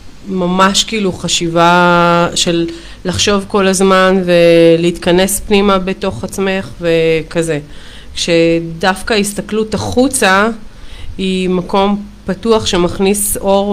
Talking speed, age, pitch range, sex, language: 85 wpm, 30-49, 160-190 Hz, female, Hebrew